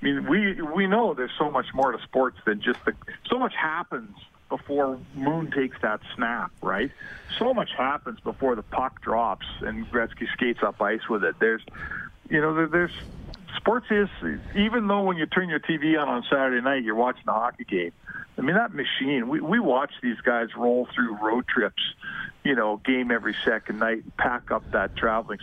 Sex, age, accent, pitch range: male, 50-69, American, 115-150 Hz